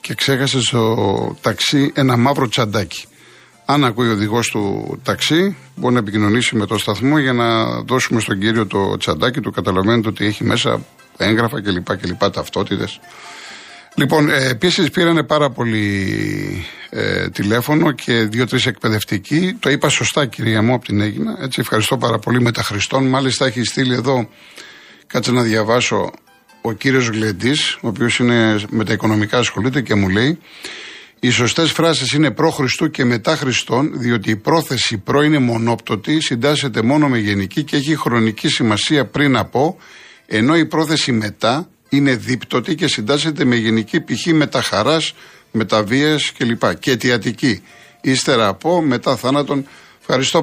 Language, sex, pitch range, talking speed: Greek, male, 110-145 Hz, 145 wpm